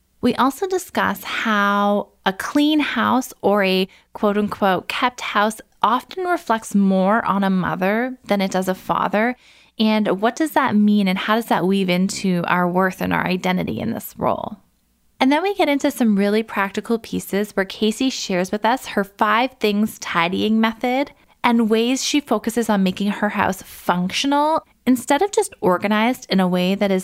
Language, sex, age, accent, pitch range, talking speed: English, female, 20-39, American, 185-230 Hz, 180 wpm